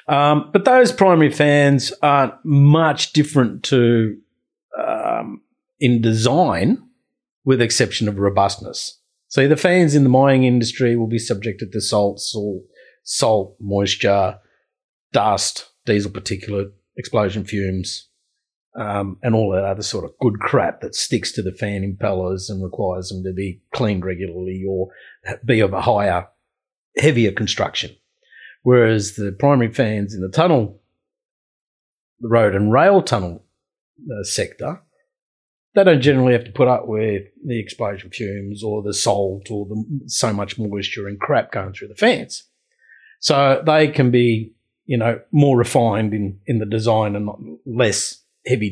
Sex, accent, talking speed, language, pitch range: male, Australian, 150 wpm, English, 100-135 Hz